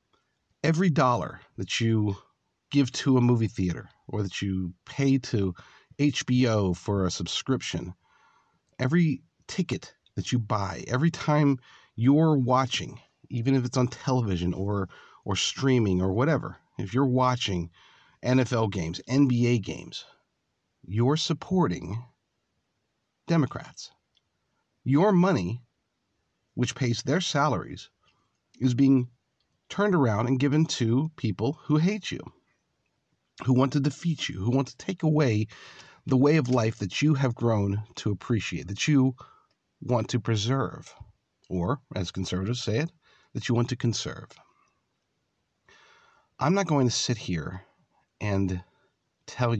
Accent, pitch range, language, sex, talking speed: American, 100-135 Hz, English, male, 130 wpm